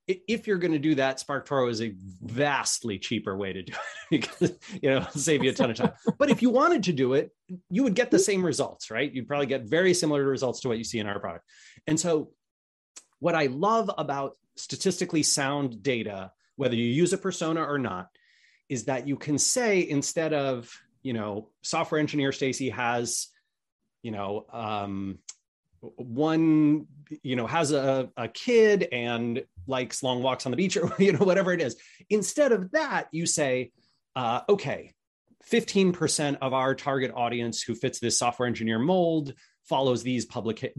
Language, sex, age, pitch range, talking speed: English, male, 30-49, 120-160 Hz, 185 wpm